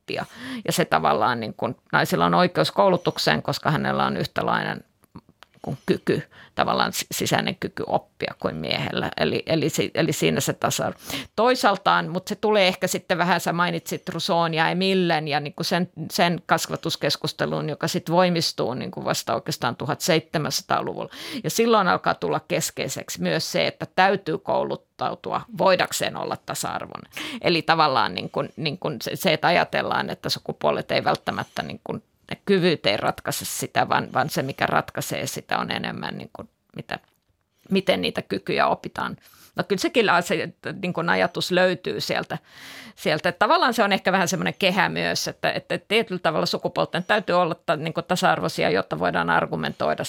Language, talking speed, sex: Finnish, 155 wpm, female